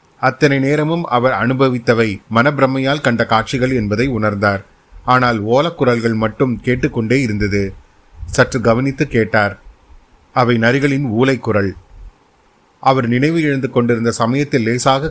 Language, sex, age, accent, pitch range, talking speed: Tamil, male, 30-49, native, 110-135 Hz, 105 wpm